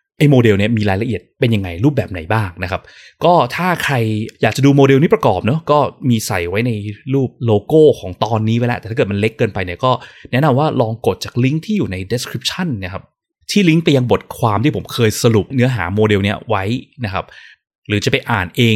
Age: 20-39